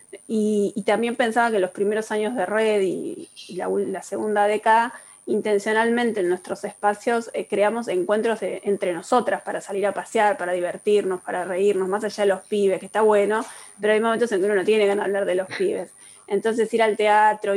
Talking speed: 200 wpm